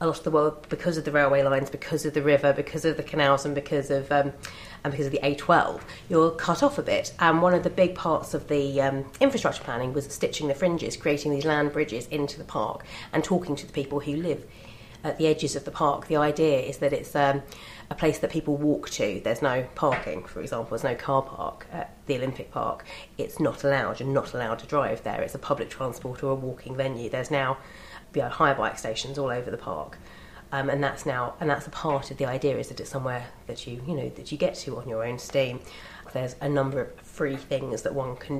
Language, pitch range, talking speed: English, 135-155 Hz, 240 wpm